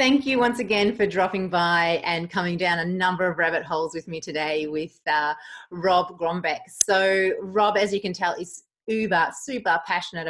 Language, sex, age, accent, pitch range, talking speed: English, female, 30-49, Australian, 165-200 Hz, 185 wpm